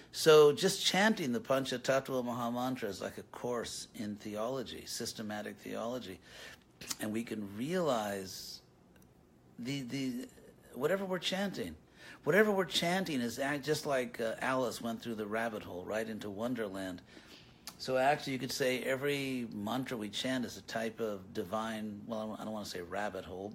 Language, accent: English, American